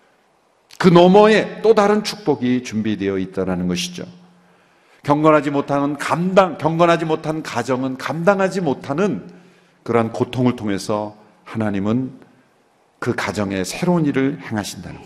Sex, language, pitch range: male, Korean, 115-180 Hz